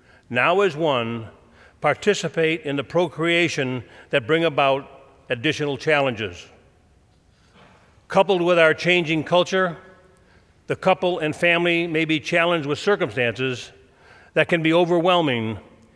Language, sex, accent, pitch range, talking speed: English, male, American, 105-170 Hz, 115 wpm